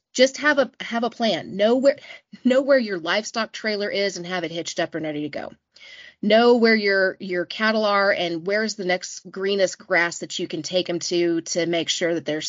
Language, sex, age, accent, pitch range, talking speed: English, female, 30-49, American, 175-220 Hz, 220 wpm